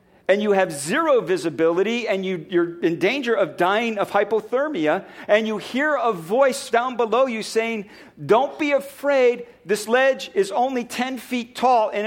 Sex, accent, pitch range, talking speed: male, American, 205-265 Hz, 170 wpm